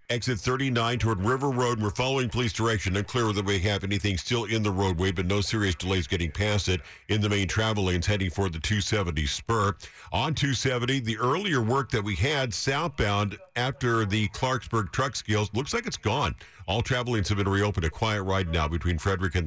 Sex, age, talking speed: male, 50-69, 205 wpm